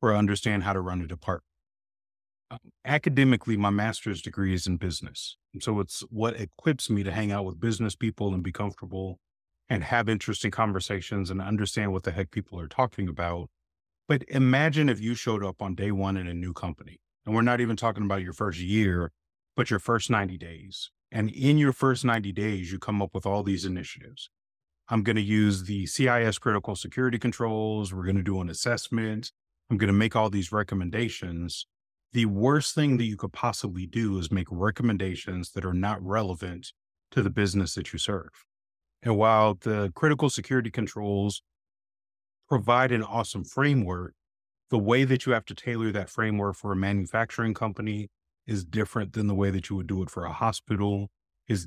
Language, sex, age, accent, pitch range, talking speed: English, male, 30-49, American, 95-110 Hz, 185 wpm